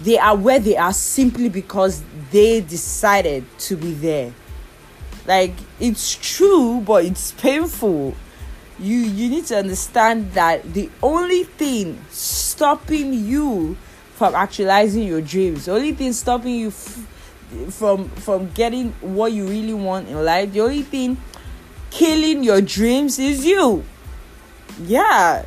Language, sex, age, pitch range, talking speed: English, female, 20-39, 190-260 Hz, 135 wpm